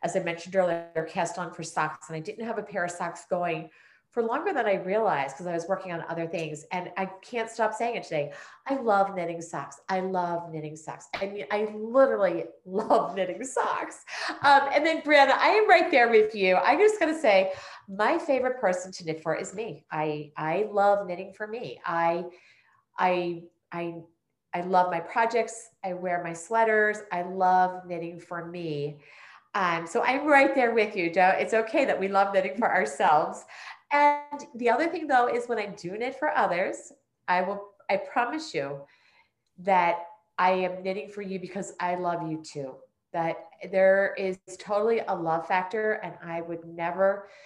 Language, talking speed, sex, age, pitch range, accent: English, 190 wpm, female, 40-59, 170-215 Hz, American